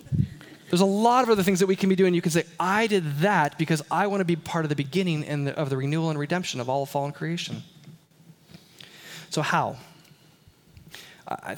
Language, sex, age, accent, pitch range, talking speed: English, male, 20-39, American, 155-200 Hz, 205 wpm